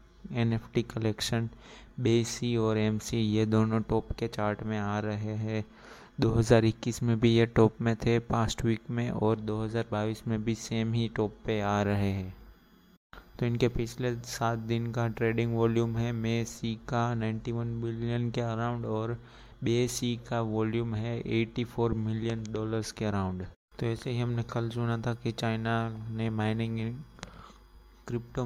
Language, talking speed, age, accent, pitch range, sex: Hindi, 160 wpm, 20-39, native, 110-115 Hz, male